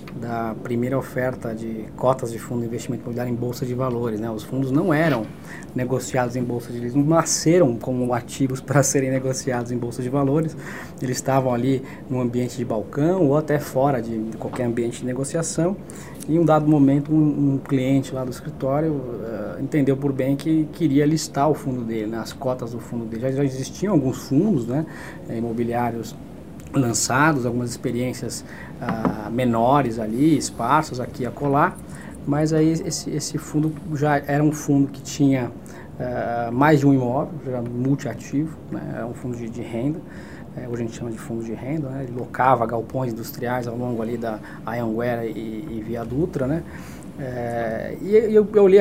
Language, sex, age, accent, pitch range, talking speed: Portuguese, male, 20-39, Brazilian, 120-150 Hz, 180 wpm